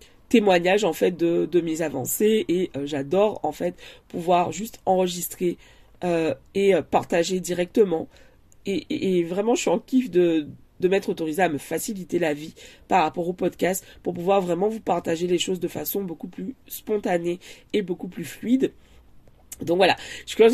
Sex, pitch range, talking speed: female, 160-200 Hz, 175 wpm